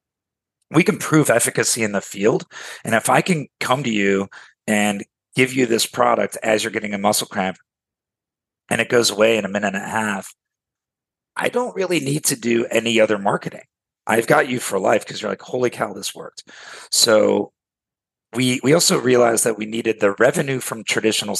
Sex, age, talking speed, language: male, 40-59, 190 wpm, English